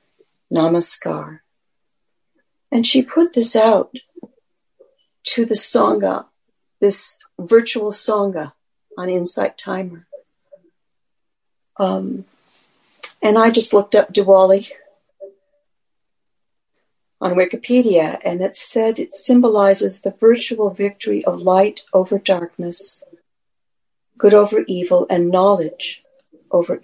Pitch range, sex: 190-245 Hz, female